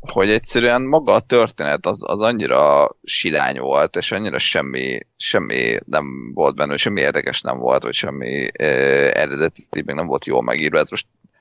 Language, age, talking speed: Hungarian, 30-49, 170 wpm